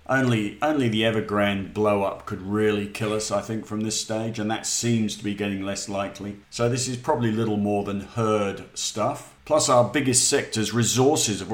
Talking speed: 200 wpm